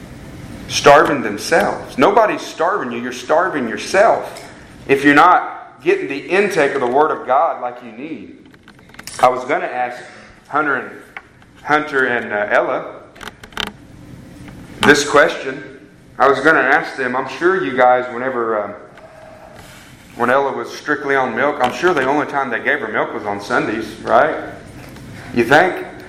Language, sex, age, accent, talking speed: English, male, 40-59, American, 155 wpm